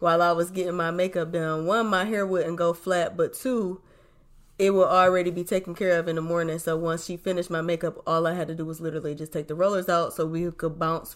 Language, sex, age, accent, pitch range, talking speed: English, female, 20-39, American, 160-195 Hz, 255 wpm